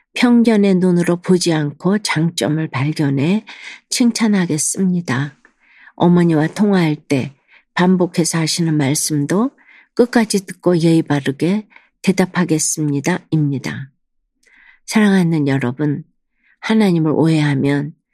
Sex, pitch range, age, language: female, 150-195 Hz, 50-69, Korean